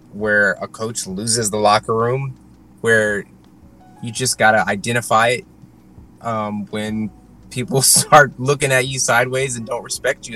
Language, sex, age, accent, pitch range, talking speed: English, male, 20-39, American, 100-125 Hz, 145 wpm